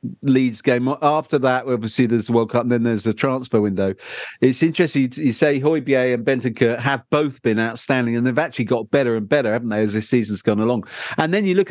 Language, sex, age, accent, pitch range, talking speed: English, male, 50-69, British, 115-155 Hz, 225 wpm